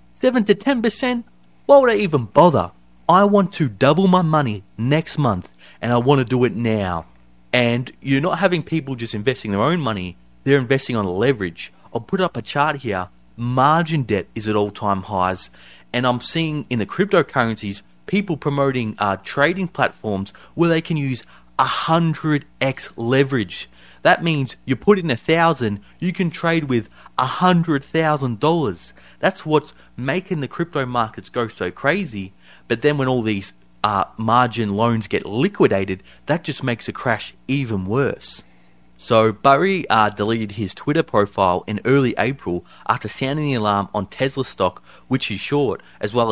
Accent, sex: Australian, male